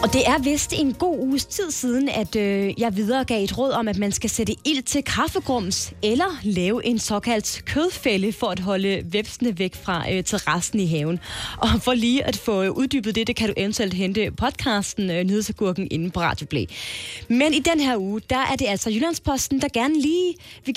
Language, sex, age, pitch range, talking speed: Danish, female, 20-39, 195-280 Hz, 200 wpm